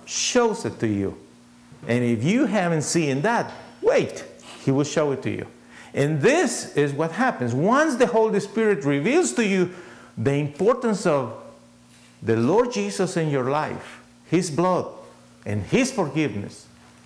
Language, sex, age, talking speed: English, male, 50-69, 150 wpm